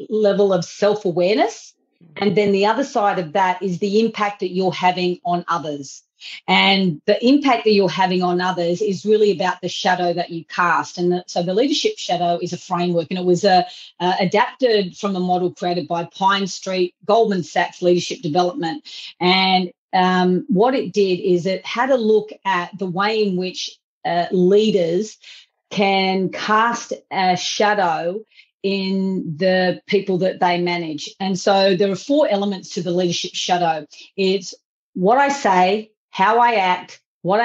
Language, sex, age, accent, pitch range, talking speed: English, female, 40-59, Australian, 180-215 Hz, 165 wpm